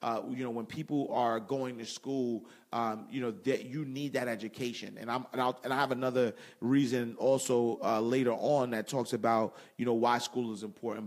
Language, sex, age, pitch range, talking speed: English, male, 30-49, 115-145 Hz, 210 wpm